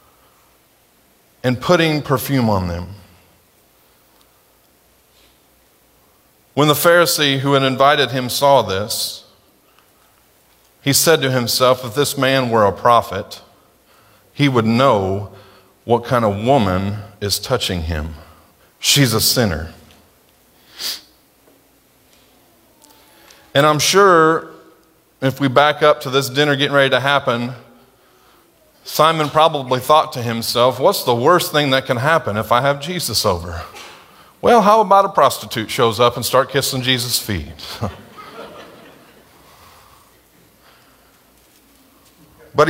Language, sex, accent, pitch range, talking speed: English, male, American, 110-145 Hz, 115 wpm